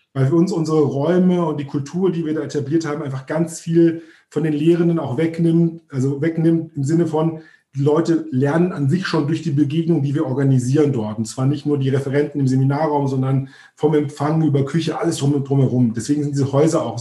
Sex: male